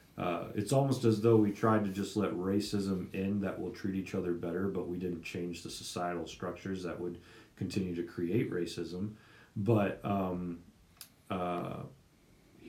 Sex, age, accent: male, 40-59, American